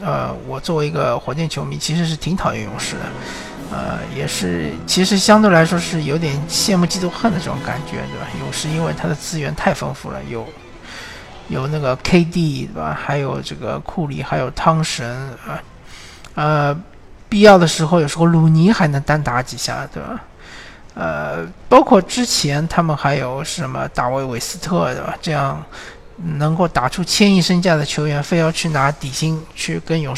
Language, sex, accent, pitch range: Chinese, male, native, 140-170 Hz